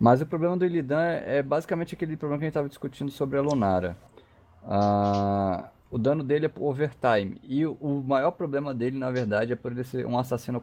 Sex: male